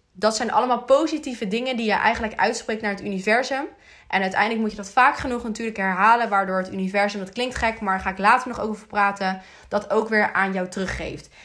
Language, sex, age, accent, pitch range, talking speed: Dutch, female, 20-39, Dutch, 195-225 Hz, 215 wpm